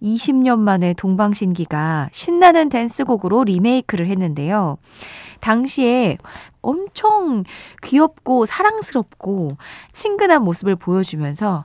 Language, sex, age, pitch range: Korean, female, 20-39, 170-255 Hz